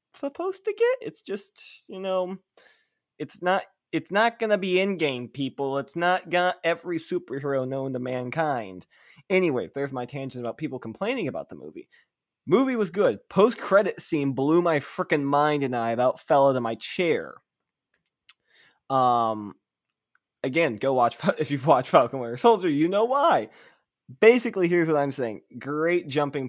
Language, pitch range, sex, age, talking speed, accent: English, 120-165 Hz, male, 20-39, 165 wpm, American